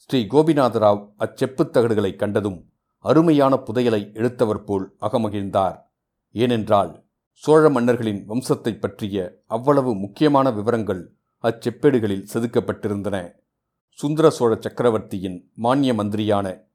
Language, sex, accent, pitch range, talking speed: Tamil, male, native, 105-125 Hz, 85 wpm